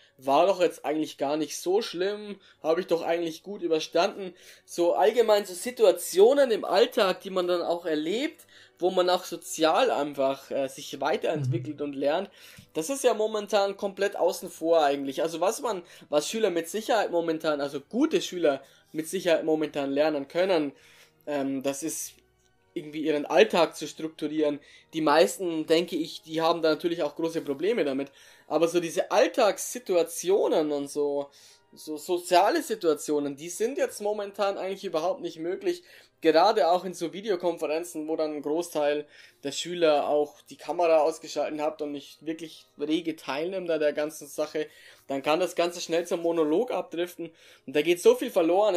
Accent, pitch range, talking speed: German, 150-185 Hz, 165 wpm